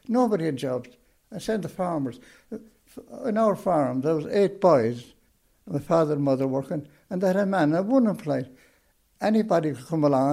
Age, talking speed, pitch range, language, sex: 60-79, 175 wpm, 145-185 Hz, English, male